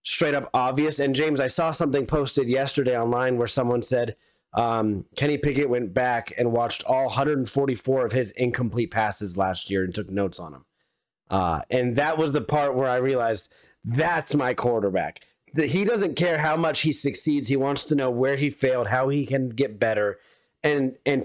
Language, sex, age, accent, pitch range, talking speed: English, male, 30-49, American, 125-150 Hz, 190 wpm